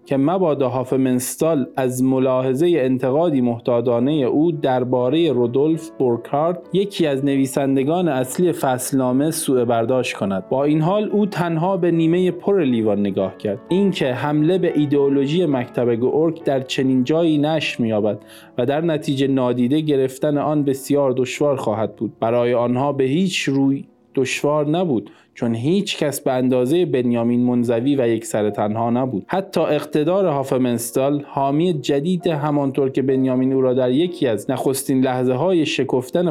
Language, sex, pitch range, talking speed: Persian, male, 125-155 Hz, 140 wpm